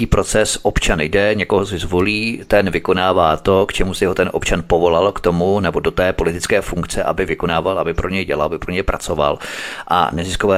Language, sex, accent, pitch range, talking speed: Czech, male, native, 85-100 Hz, 200 wpm